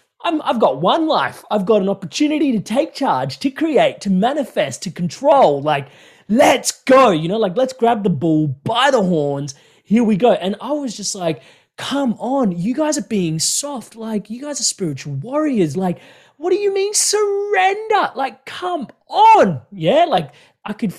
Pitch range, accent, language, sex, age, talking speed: 135-225 Hz, Australian, English, male, 20-39, 185 wpm